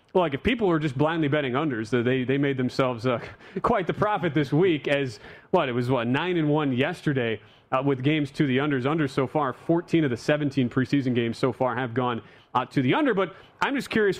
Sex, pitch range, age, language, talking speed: male, 135-165 Hz, 30-49, English, 225 wpm